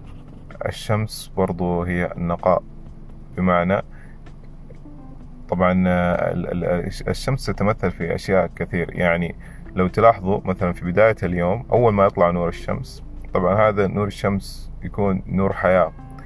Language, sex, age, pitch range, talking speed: Arabic, male, 20-39, 85-100 Hz, 110 wpm